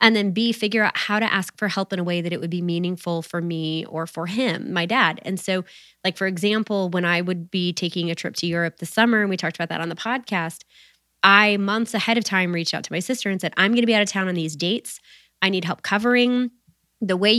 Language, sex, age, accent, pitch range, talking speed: English, female, 20-39, American, 170-205 Hz, 265 wpm